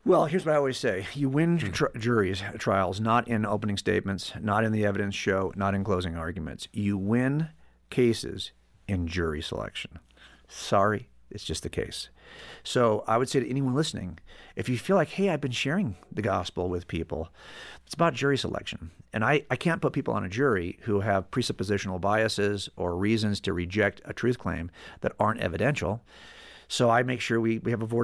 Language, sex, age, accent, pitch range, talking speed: English, male, 50-69, American, 95-125 Hz, 190 wpm